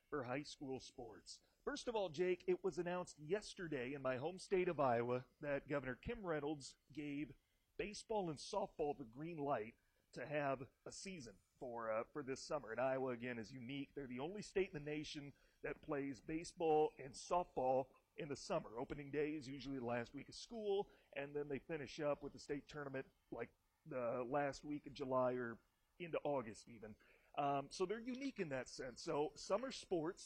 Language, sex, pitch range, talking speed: English, male, 135-175 Hz, 190 wpm